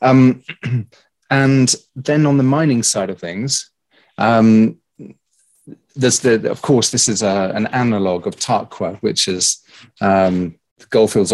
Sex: male